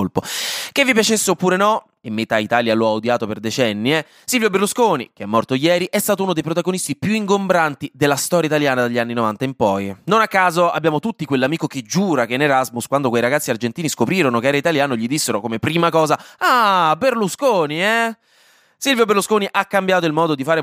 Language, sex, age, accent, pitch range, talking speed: Italian, male, 20-39, native, 120-180 Hz, 205 wpm